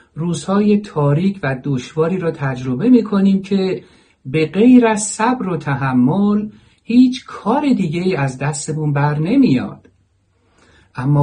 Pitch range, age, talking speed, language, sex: 120-160 Hz, 50-69, 120 wpm, Persian, male